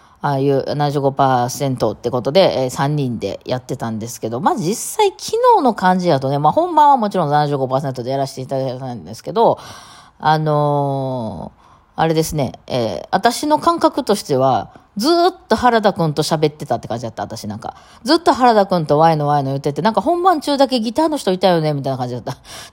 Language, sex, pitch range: Japanese, female, 135-190 Hz